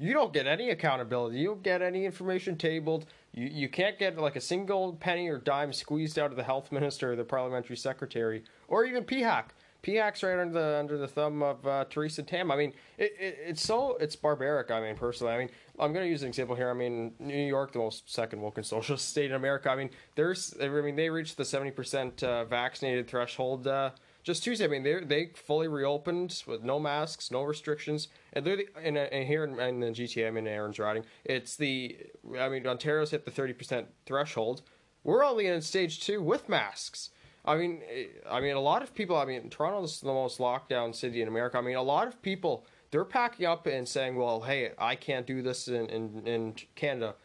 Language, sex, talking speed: English, male, 220 wpm